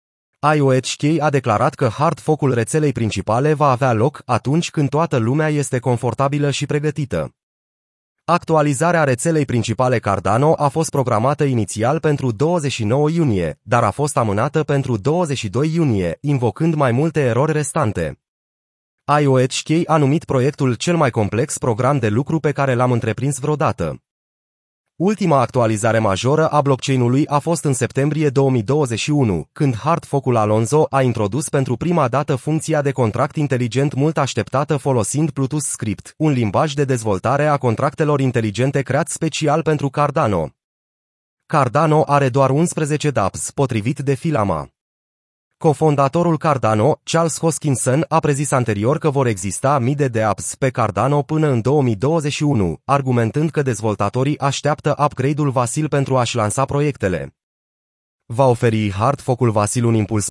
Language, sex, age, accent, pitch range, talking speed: Romanian, male, 30-49, native, 120-150 Hz, 135 wpm